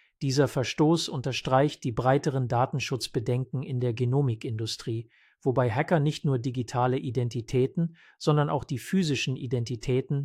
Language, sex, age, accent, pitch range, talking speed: English, male, 50-69, German, 120-140 Hz, 115 wpm